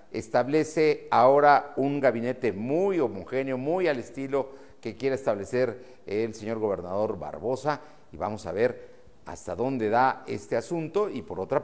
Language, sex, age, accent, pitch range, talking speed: Spanish, male, 50-69, Mexican, 115-160 Hz, 145 wpm